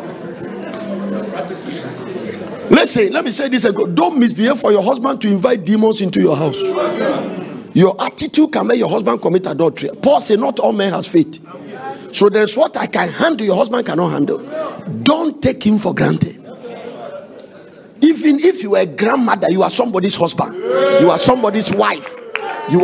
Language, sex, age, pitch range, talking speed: English, male, 50-69, 180-260 Hz, 165 wpm